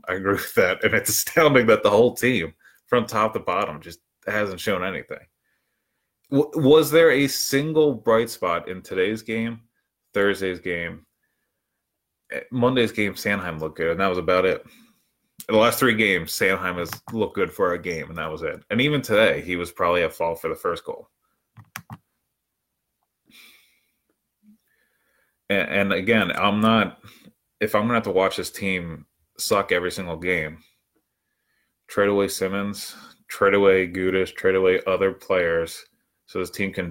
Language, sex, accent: English, male, American